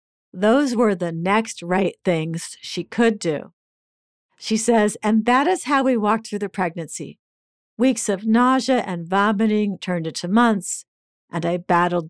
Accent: American